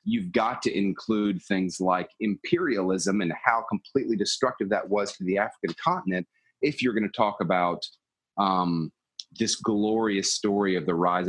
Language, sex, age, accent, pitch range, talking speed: English, male, 30-49, American, 95-120 Hz, 160 wpm